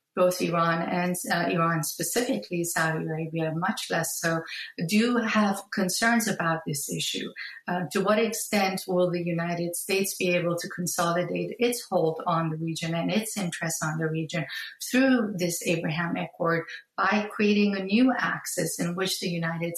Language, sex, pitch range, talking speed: English, female, 170-200 Hz, 160 wpm